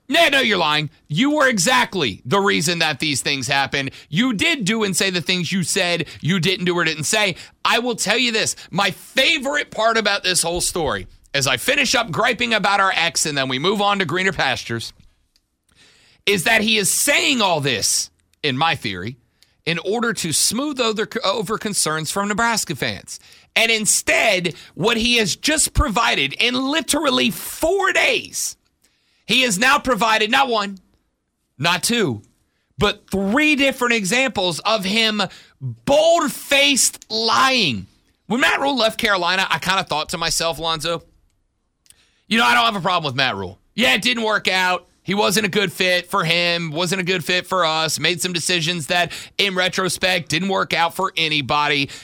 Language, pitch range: English, 160-220 Hz